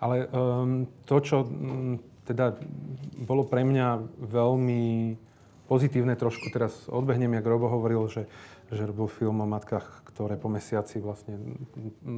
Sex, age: male, 40-59